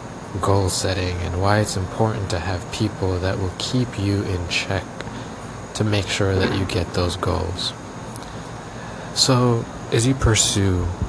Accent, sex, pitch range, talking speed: American, male, 90-115 Hz, 145 wpm